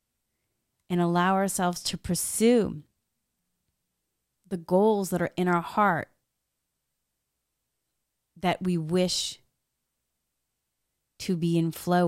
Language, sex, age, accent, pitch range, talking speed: English, female, 30-49, American, 155-195 Hz, 95 wpm